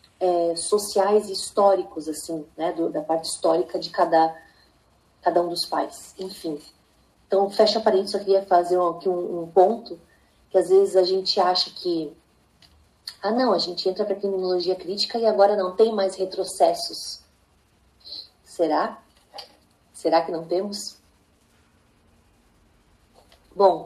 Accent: Brazilian